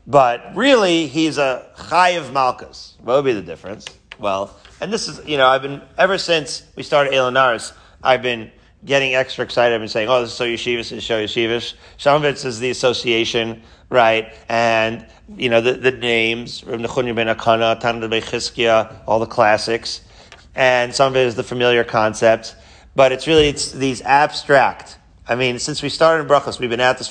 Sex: male